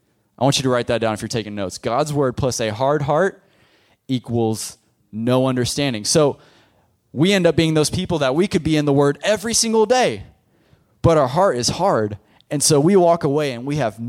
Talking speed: 215 wpm